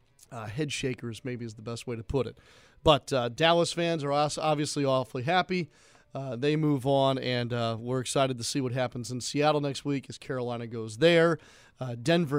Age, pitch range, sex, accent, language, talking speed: 40-59, 120-145 Hz, male, American, English, 205 wpm